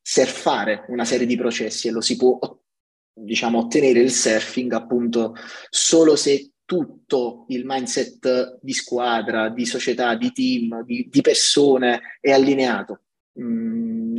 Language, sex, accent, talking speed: Italian, male, native, 130 wpm